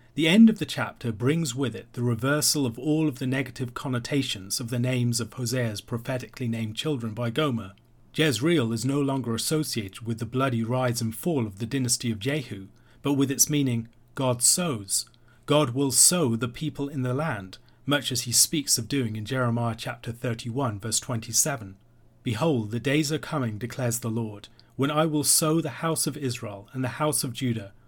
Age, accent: 40-59, British